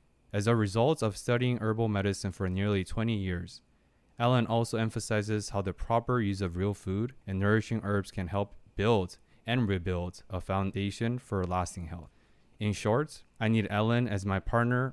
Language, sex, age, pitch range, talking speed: English, male, 20-39, 95-115 Hz, 170 wpm